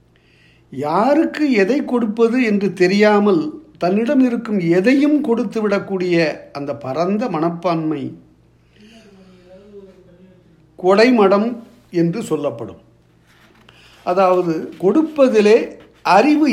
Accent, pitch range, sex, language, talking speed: native, 155-220 Hz, male, Tamil, 70 wpm